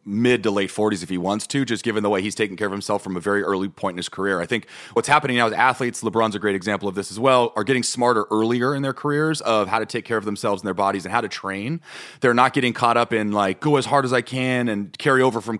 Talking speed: 300 wpm